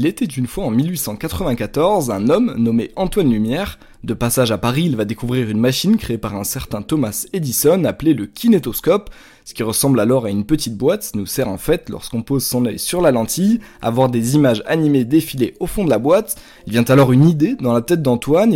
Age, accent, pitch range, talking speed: 20-39, French, 120-160 Hz, 220 wpm